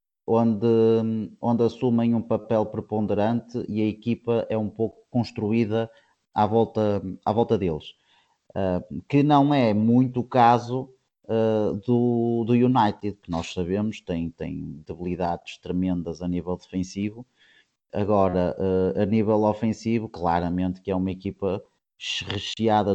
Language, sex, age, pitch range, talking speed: Portuguese, male, 30-49, 95-110 Hz, 120 wpm